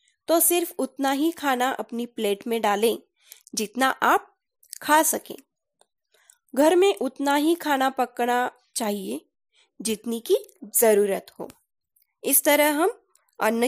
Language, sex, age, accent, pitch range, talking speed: Marathi, female, 20-39, native, 235-350 Hz, 125 wpm